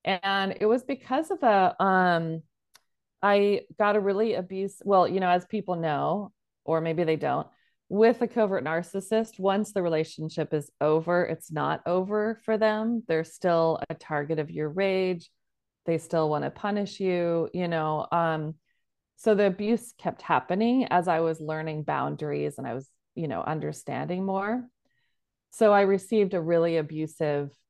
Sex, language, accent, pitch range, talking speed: female, English, American, 155-200 Hz, 160 wpm